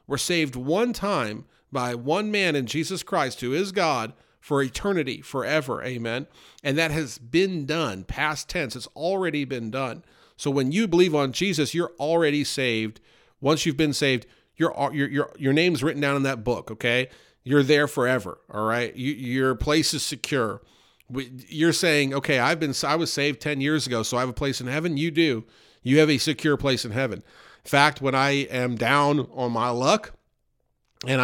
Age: 40-59